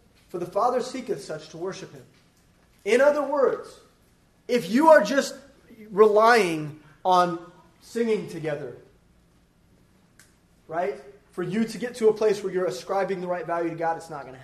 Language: English